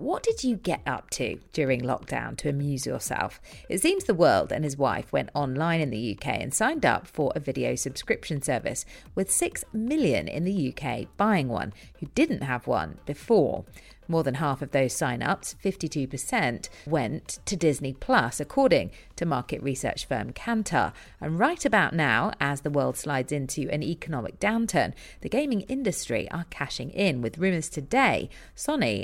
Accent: British